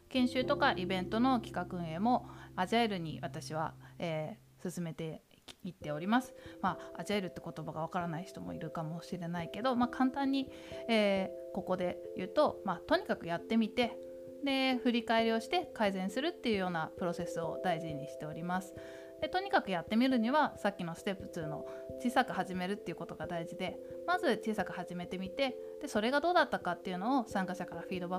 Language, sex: Japanese, female